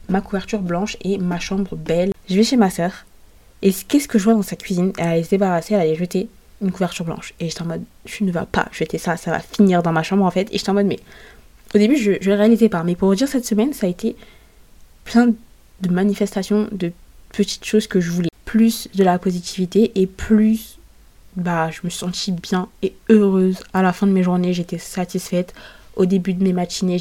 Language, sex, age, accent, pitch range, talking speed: French, female, 20-39, French, 180-215 Hz, 230 wpm